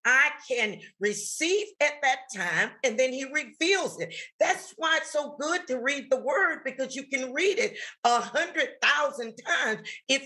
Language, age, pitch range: English, 40-59, 225-305 Hz